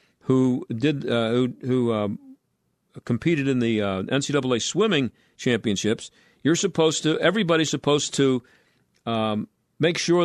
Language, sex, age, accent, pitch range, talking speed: English, male, 50-69, American, 130-170 Hz, 130 wpm